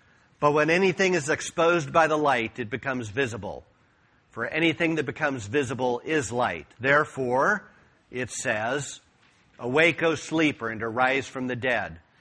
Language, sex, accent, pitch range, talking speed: English, male, American, 130-160 Hz, 145 wpm